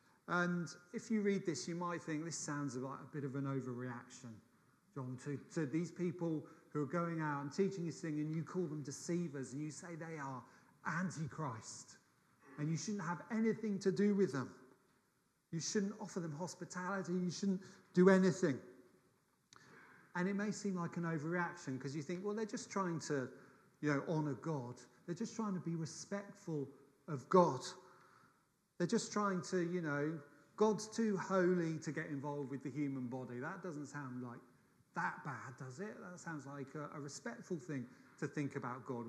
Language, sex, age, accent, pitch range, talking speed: English, male, 40-59, British, 145-185 Hz, 185 wpm